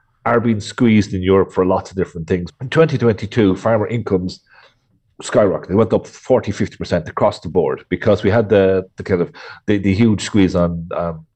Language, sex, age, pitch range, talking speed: English, male, 40-59, 95-120 Hz, 190 wpm